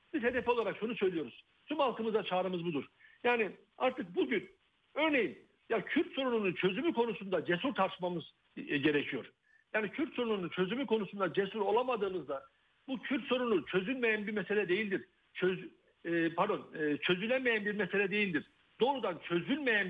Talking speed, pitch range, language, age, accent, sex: 130 wpm, 190-245 Hz, Turkish, 60-79, native, male